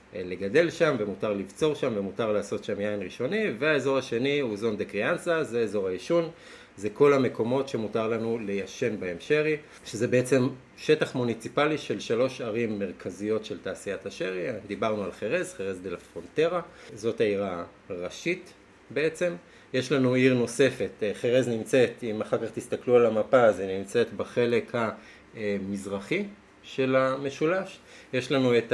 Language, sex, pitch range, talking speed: Hebrew, male, 100-140 Hz, 145 wpm